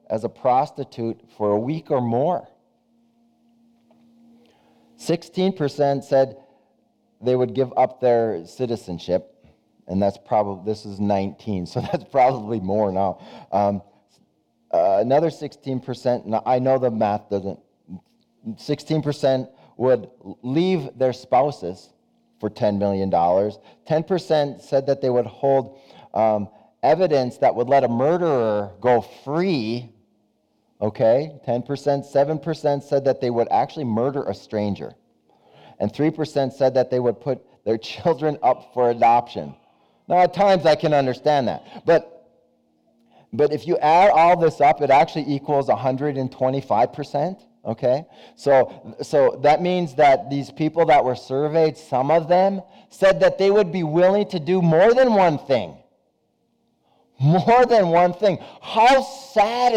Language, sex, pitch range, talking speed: English, male, 110-165 Hz, 135 wpm